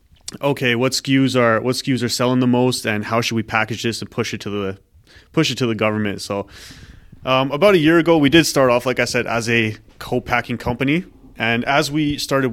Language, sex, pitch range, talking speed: English, male, 110-135 Hz, 225 wpm